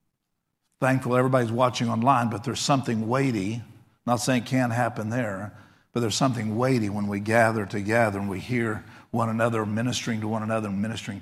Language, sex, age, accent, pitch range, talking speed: English, male, 50-69, American, 120-150 Hz, 180 wpm